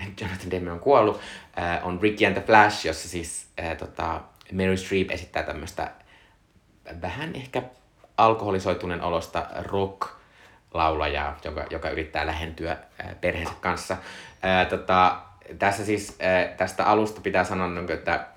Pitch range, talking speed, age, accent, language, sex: 85-100 Hz, 130 wpm, 20-39, native, Finnish, male